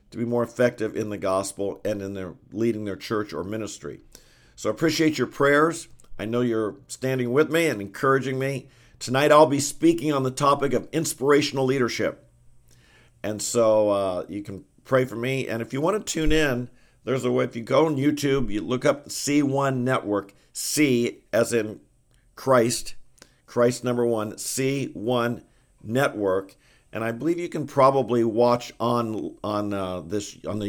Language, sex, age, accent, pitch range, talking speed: English, male, 50-69, American, 110-140 Hz, 170 wpm